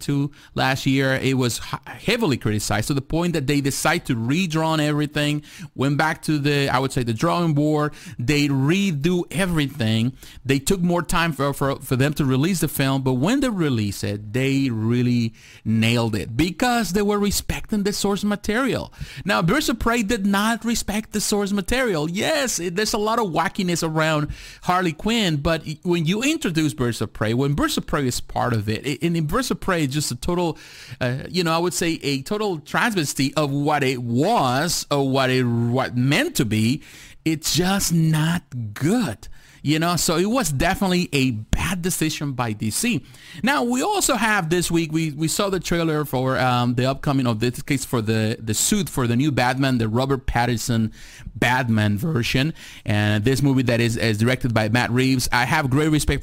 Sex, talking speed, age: male, 190 wpm, 40-59